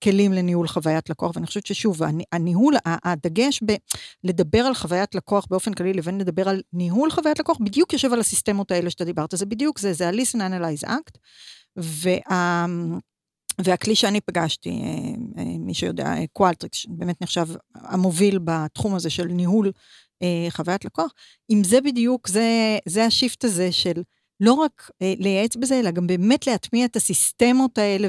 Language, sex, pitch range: Hebrew, female, 175-225 Hz